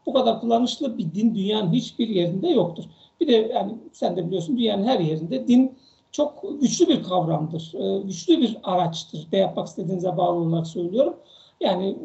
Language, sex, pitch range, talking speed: Turkish, male, 190-240 Hz, 165 wpm